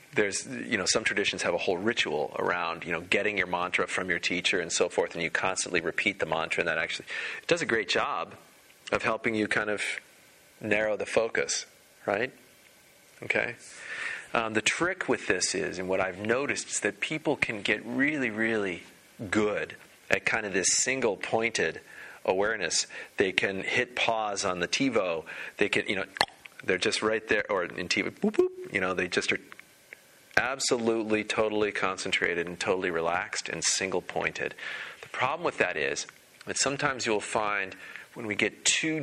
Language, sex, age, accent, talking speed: English, male, 40-59, American, 175 wpm